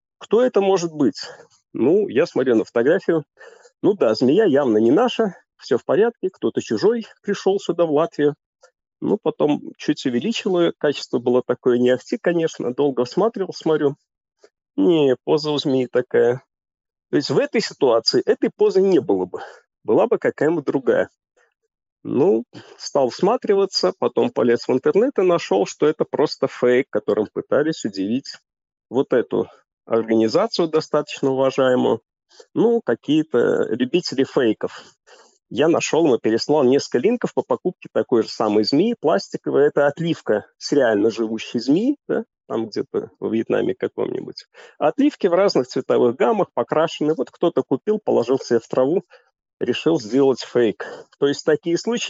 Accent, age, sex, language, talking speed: native, 40-59, male, Russian, 145 wpm